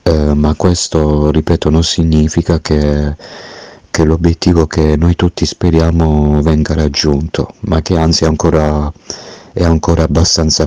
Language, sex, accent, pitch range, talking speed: Italian, male, native, 75-85 Hz, 130 wpm